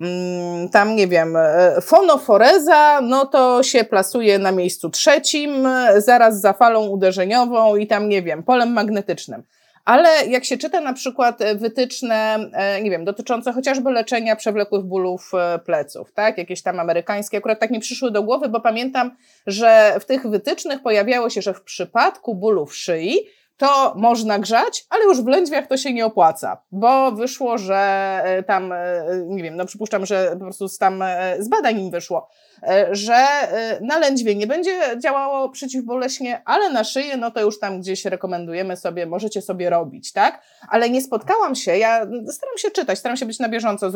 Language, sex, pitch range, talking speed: Polish, female, 195-265 Hz, 165 wpm